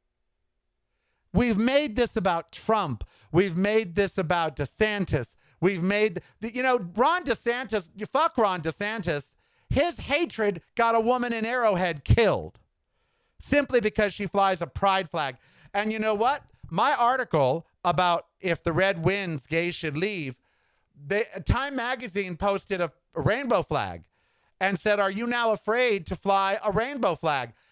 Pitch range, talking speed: 175-235 Hz, 145 wpm